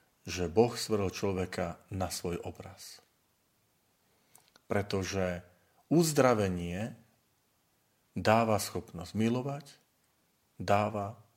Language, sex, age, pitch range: Slovak, male, 40-59, 95-120 Hz